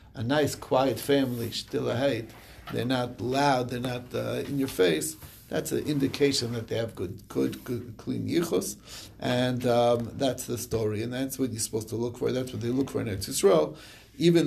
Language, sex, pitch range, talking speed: English, male, 115-140 Hz, 205 wpm